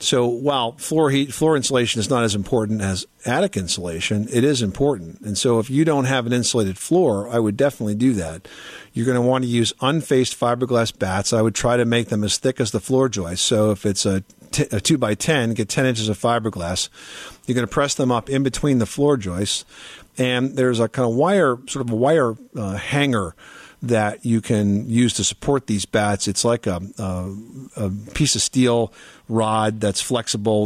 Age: 50-69